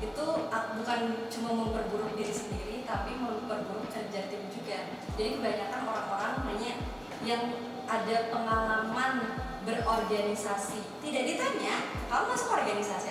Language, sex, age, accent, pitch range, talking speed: Indonesian, female, 20-39, native, 200-230 Hz, 110 wpm